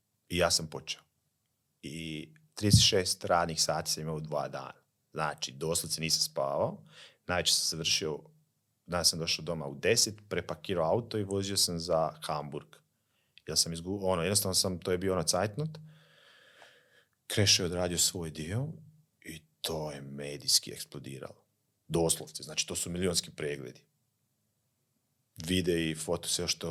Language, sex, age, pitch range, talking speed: Croatian, male, 30-49, 85-105 Hz, 145 wpm